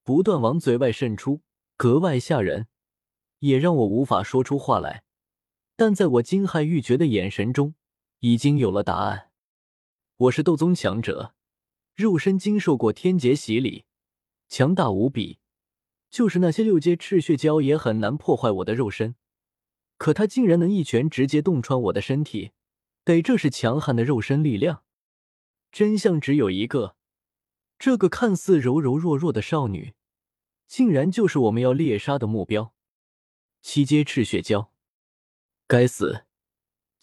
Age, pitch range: 20-39, 115-170 Hz